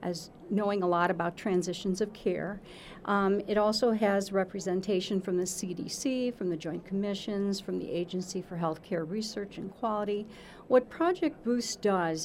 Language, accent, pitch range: English, American, 180-220 Hz